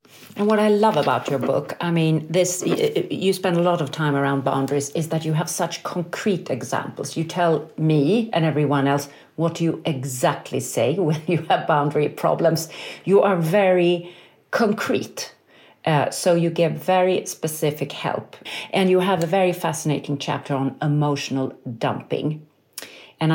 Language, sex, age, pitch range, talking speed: English, female, 40-59, 145-175 Hz, 160 wpm